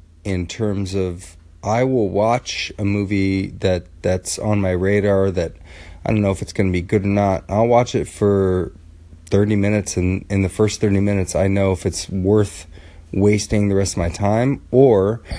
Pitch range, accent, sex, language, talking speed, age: 85-100 Hz, American, male, English, 185 wpm, 30-49